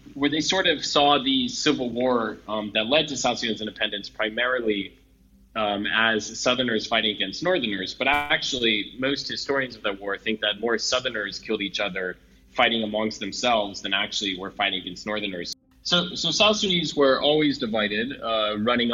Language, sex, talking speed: English, male, 170 wpm